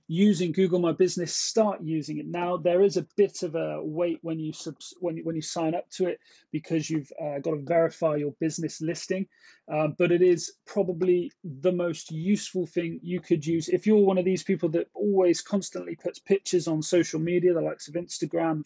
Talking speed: 210 wpm